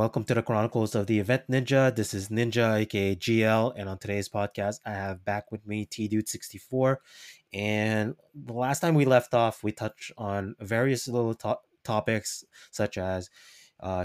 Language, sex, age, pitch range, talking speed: English, male, 20-39, 100-120 Hz, 170 wpm